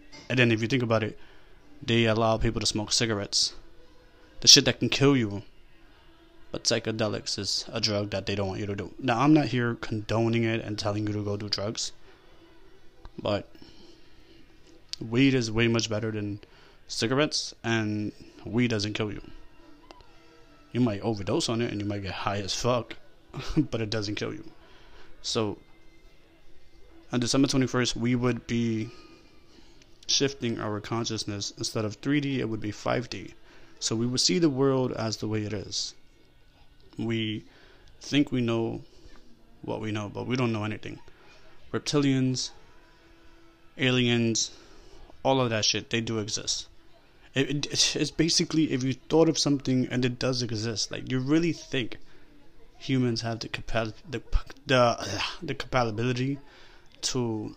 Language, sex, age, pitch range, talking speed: English, male, 20-39, 110-130 Hz, 150 wpm